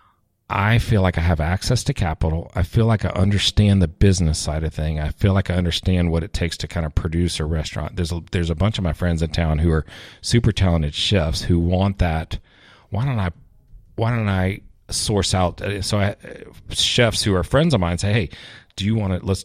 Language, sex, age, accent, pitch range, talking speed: English, male, 40-59, American, 85-105 Hz, 225 wpm